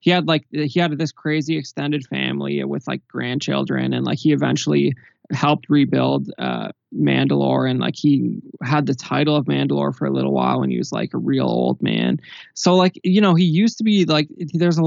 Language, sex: English, male